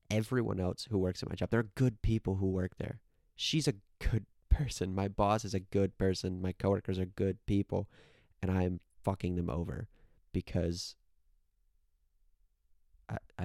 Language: English